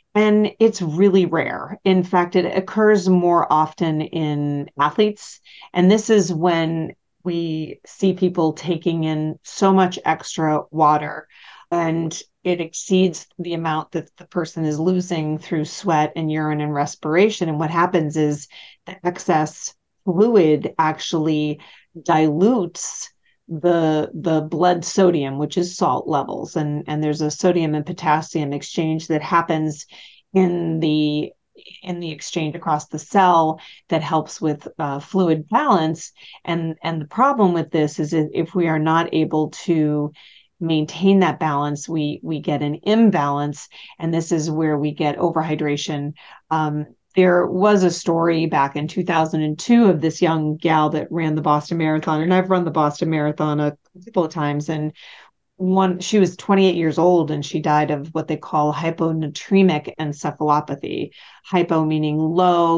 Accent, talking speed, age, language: American, 150 wpm, 40-59, English